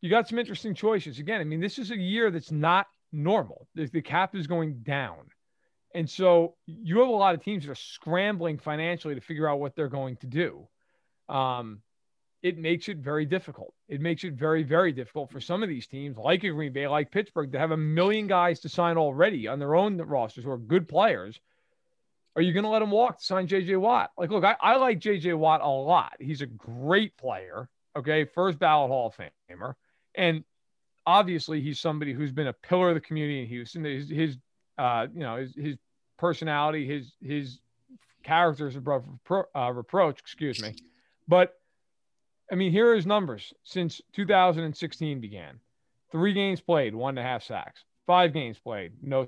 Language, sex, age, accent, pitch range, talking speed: English, male, 40-59, American, 140-185 Hz, 200 wpm